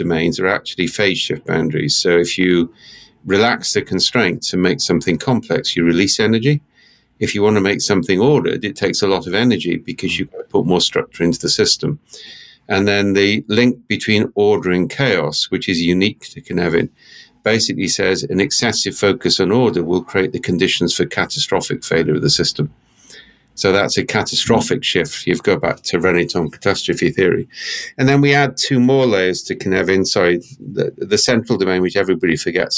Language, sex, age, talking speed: English, male, 50-69, 180 wpm